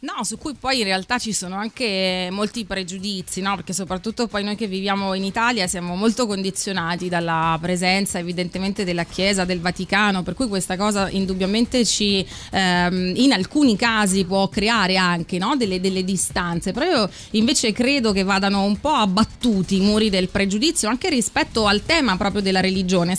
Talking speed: 175 wpm